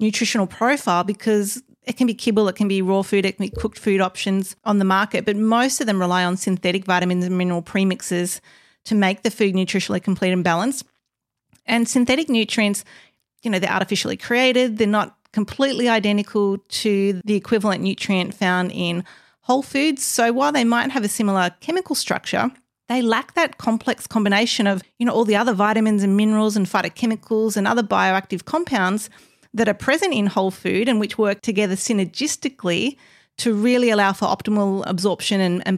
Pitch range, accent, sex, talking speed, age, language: 190-235 Hz, Australian, female, 180 wpm, 40-59, English